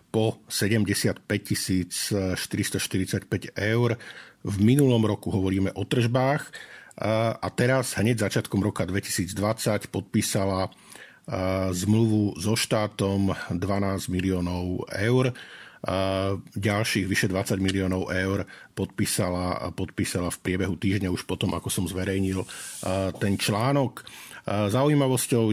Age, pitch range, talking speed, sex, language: 50-69, 95-110 Hz, 95 wpm, male, Slovak